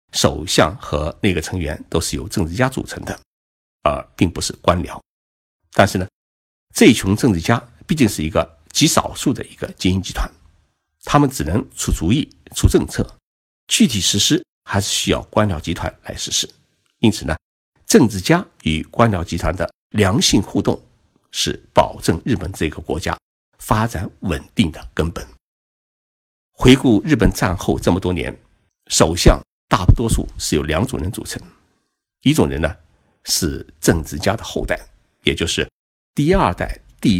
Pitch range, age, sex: 80-100 Hz, 60-79, male